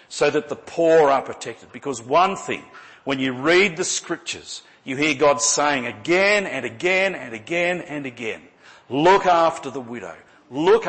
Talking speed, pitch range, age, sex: 165 wpm, 120-160 Hz, 50-69, male